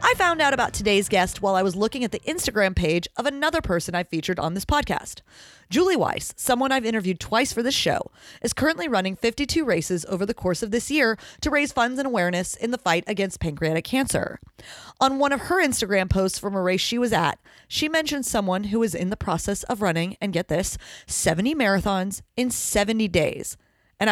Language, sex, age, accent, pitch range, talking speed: English, female, 30-49, American, 175-245 Hz, 210 wpm